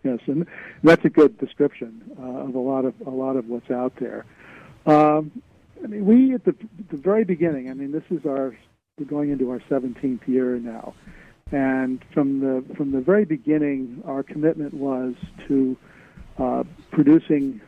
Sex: male